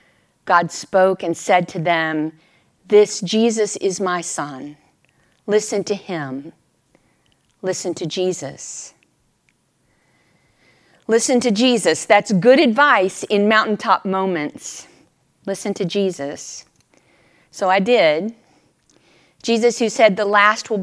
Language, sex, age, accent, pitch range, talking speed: English, female, 40-59, American, 185-230 Hz, 110 wpm